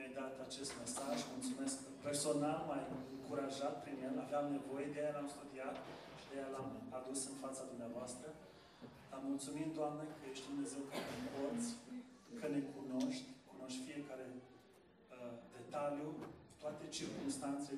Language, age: Romanian, 30-49